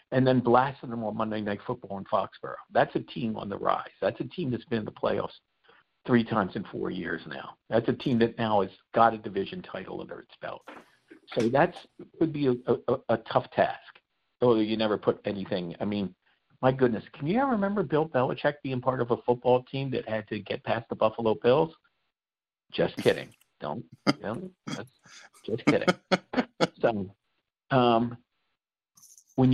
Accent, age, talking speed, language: American, 50-69, 185 wpm, English